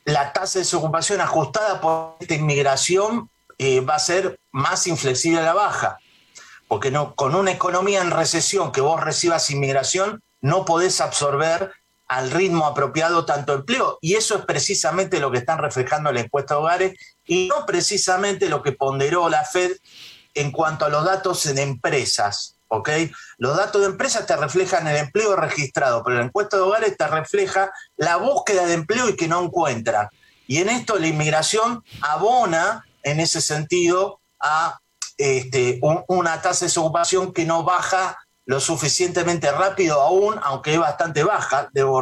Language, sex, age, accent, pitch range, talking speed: Spanish, male, 50-69, Argentinian, 145-190 Hz, 165 wpm